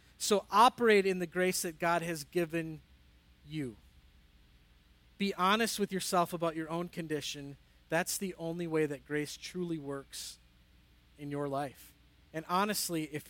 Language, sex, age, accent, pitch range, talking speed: English, male, 40-59, American, 135-180 Hz, 145 wpm